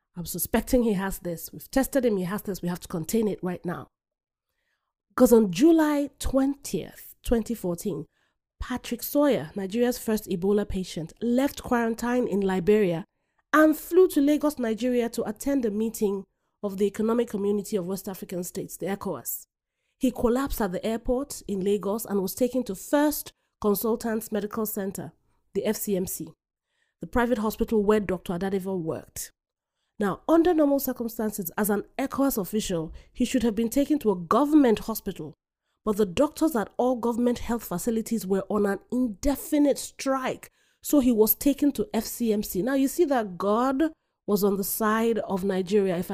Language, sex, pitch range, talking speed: English, female, 195-250 Hz, 160 wpm